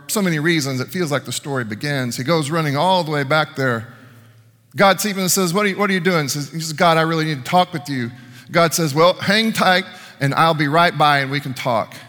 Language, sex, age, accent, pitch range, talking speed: English, male, 40-59, American, 120-170 Hz, 255 wpm